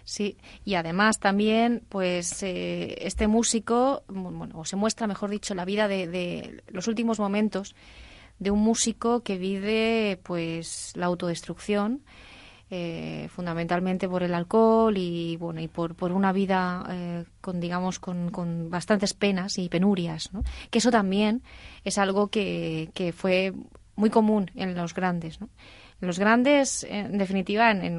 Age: 20-39